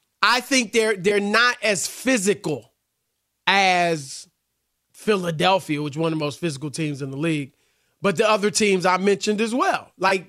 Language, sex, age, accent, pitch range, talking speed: English, male, 30-49, American, 175-230 Hz, 170 wpm